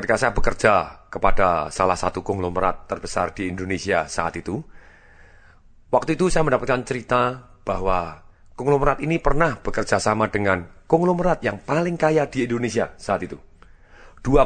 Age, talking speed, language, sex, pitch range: 40-59, 135 wpm, Indonesian, male, 100-135 Hz